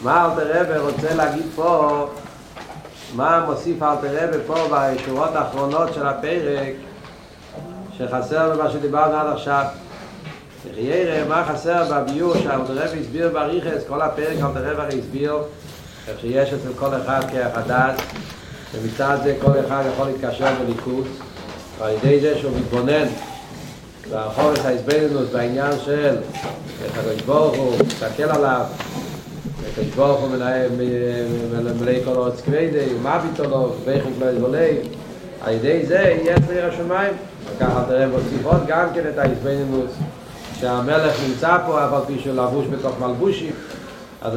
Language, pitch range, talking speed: Hebrew, 130-160 Hz, 130 wpm